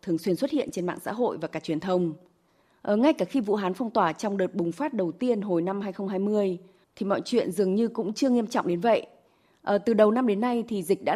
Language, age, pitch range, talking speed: Vietnamese, 20-39, 175-230 Hz, 255 wpm